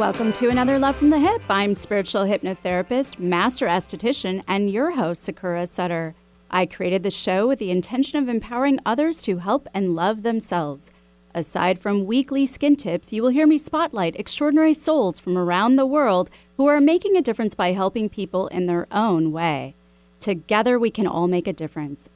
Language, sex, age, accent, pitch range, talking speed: English, female, 30-49, American, 175-245 Hz, 180 wpm